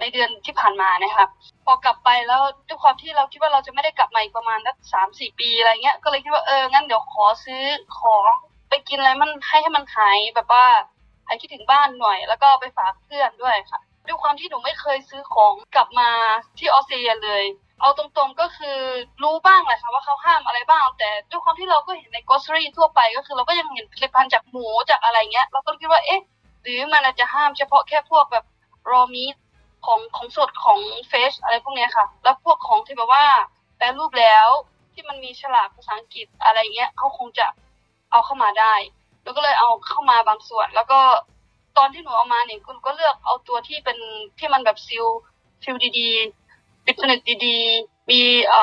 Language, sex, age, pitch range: Thai, female, 20-39, 230-305 Hz